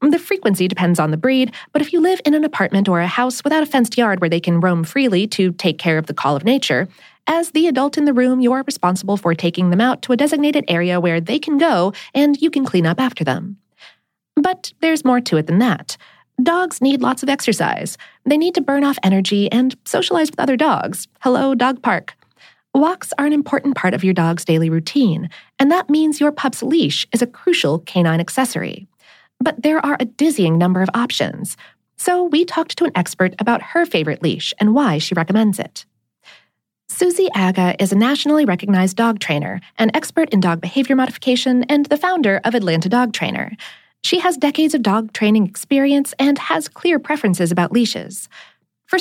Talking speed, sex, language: 205 wpm, female, English